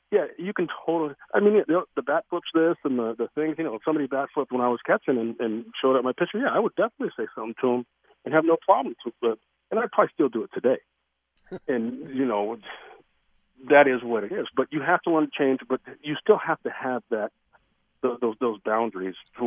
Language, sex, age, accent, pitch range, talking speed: English, male, 40-59, American, 115-160 Hz, 245 wpm